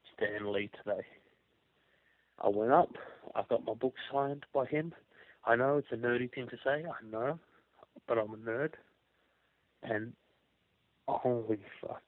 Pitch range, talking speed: 110-130 Hz, 150 wpm